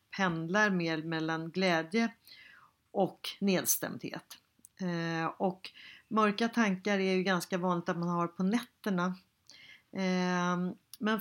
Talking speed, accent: 100 wpm, native